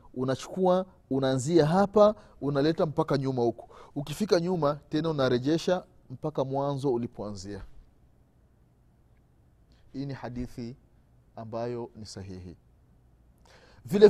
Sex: male